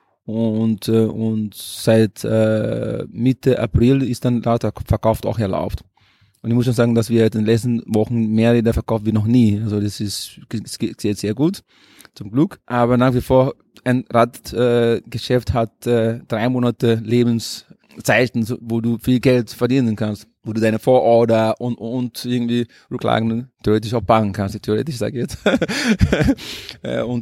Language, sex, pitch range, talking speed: German, male, 110-125 Hz, 165 wpm